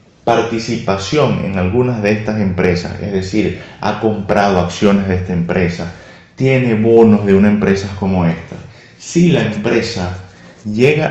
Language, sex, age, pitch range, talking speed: Spanish, male, 30-49, 100-125 Hz, 135 wpm